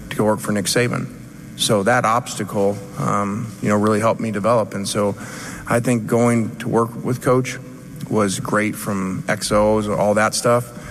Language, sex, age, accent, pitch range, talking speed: English, male, 30-49, American, 100-110 Hz, 170 wpm